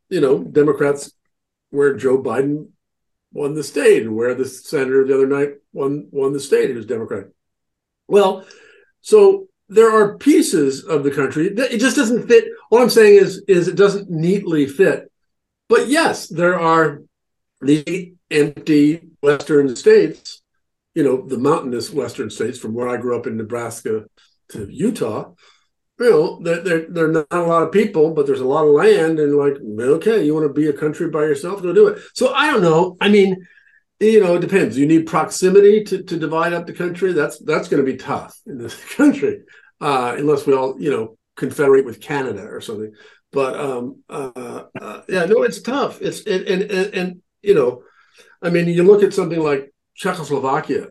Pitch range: 145-220 Hz